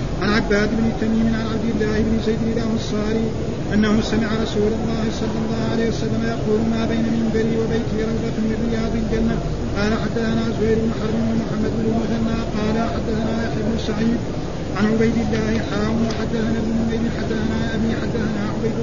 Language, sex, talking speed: Arabic, male, 165 wpm